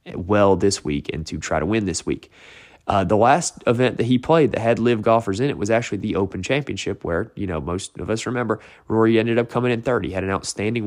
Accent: American